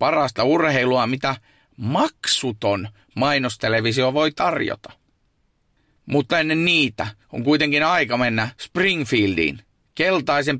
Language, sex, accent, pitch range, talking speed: Finnish, male, native, 115-150 Hz, 90 wpm